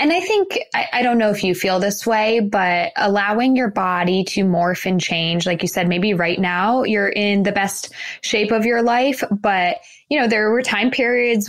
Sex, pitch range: female, 180-220 Hz